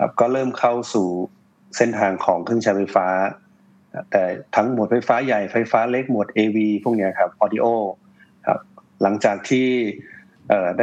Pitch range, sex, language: 100-120 Hz, male, Thai